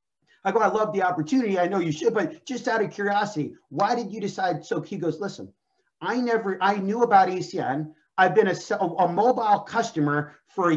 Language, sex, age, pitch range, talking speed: English, male, 30-49, 160-215 Hz, 205 wpm